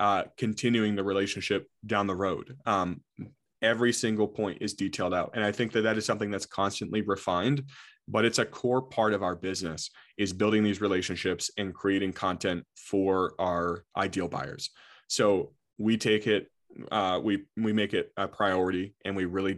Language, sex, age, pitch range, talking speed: English, male, 20-39, 95-110 Hz, 175 wpm